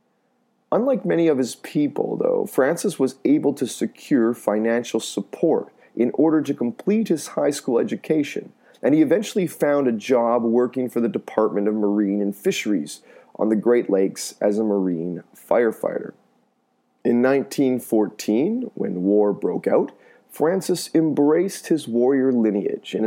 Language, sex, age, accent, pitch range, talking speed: English, male, 30-49, American, 110-175 Hz, 145 wpm